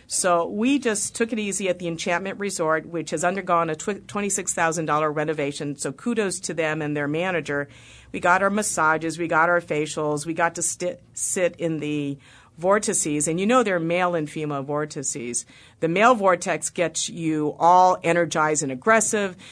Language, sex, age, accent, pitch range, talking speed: English, female, 50-69, American, 155-195 Hz, 170 wpm